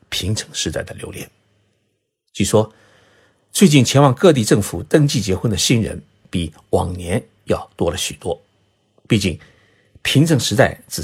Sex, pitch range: male, 95-140 Hz